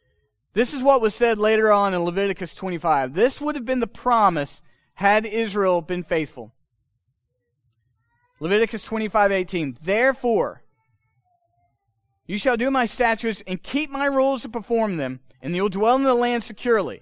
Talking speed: 150 wpm